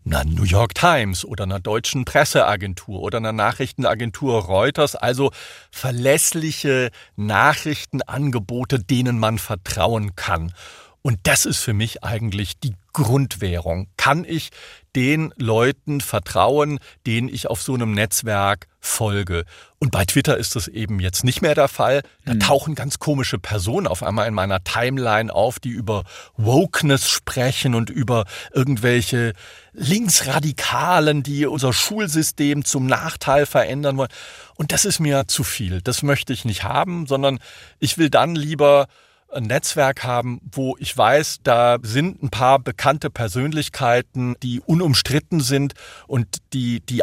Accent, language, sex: German, German, male